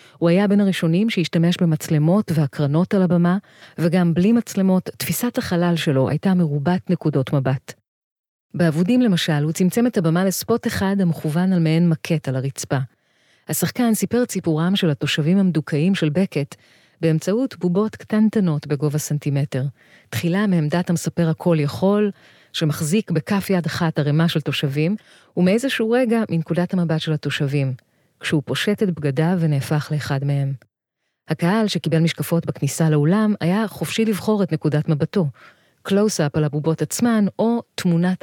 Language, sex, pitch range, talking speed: Hebrew, female, 150-190 Hz, 140 wpm